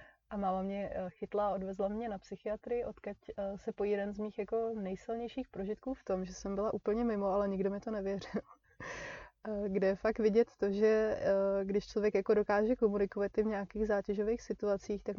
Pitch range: 195-215 Hz